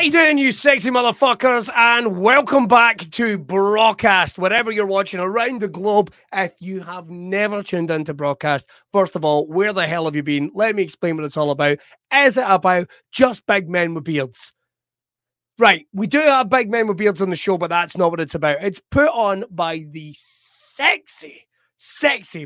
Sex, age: male, 30-49